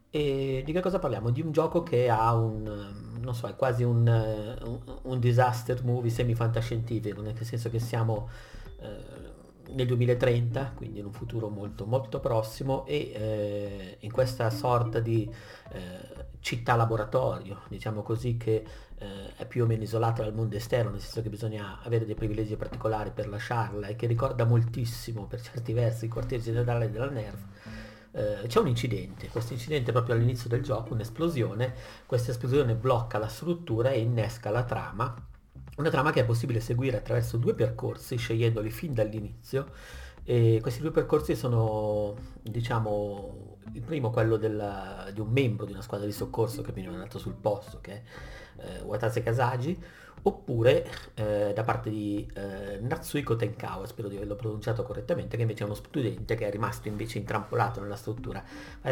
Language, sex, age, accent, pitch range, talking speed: Italian, male, 50-69, native, 105-125 Hz, 165 wpm